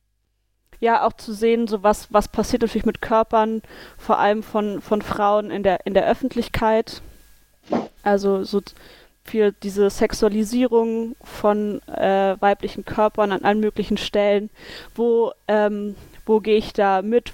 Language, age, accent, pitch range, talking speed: German, 20-39, German, 205-230 Hz, 130 wpm